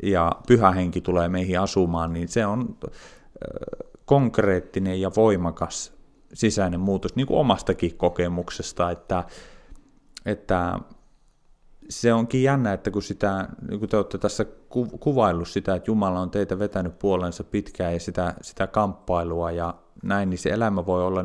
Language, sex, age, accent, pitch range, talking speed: Finnish, male, 30-49, native, 85-105 Hz, 140 wpm